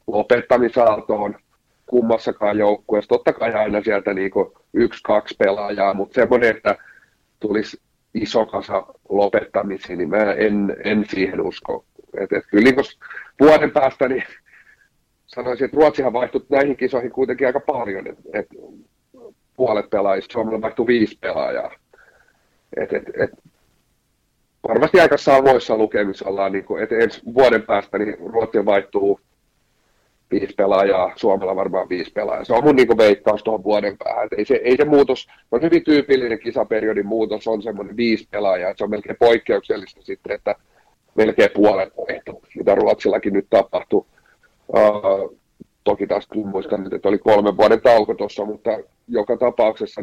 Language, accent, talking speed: Finnish, native, 140 wpm